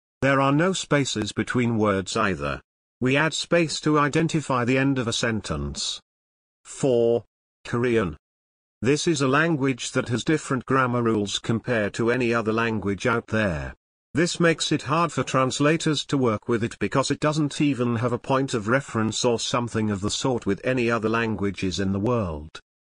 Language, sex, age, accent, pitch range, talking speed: English, male, 50-69, British, 105-135 Hz, 175 wpm